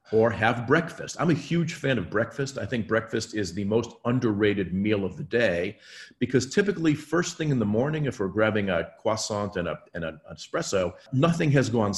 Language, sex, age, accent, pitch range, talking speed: English, male, 50-69, American, 95-135 Hz, 200 wpm